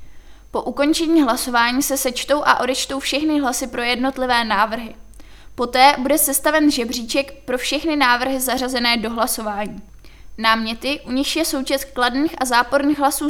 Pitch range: 245-285 Hz